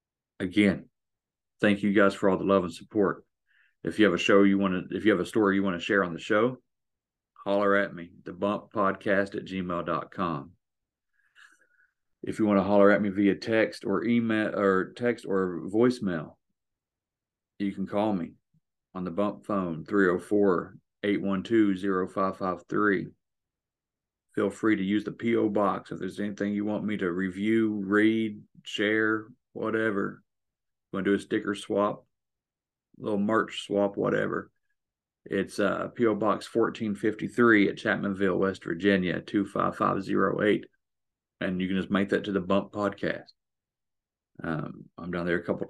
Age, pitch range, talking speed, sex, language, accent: 40-59, 95-105 Hz, 150 wpm, male, English, American